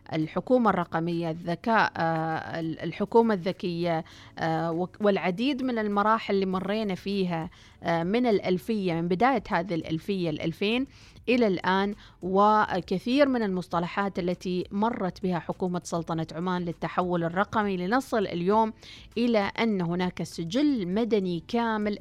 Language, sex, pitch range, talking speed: Arabic, female, 170-205 Hz, 110 wpm